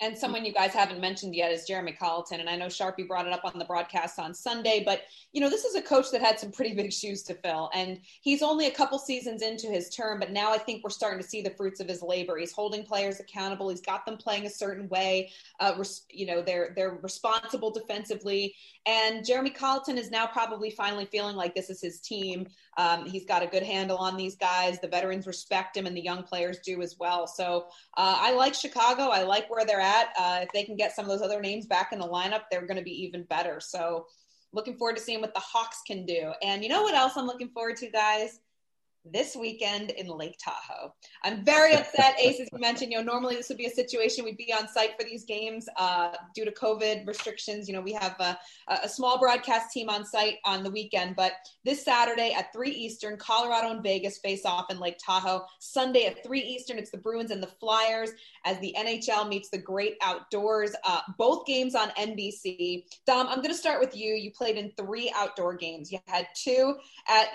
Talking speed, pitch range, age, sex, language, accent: 230 wpm, 185-230 Hz, 20-39, female, English, American